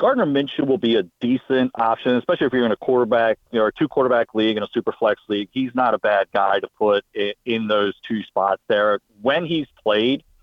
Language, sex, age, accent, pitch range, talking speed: English, male, 40-59, American, 110-135 Hz, 225 wpm